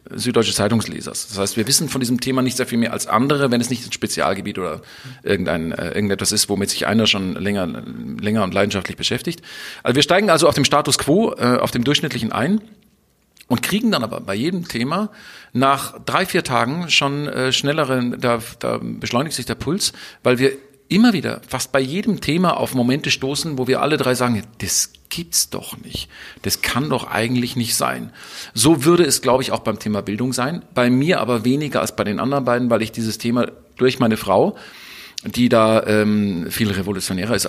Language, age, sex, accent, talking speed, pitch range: German, 40-59, male, German, 200 wpm, 110-135 Hz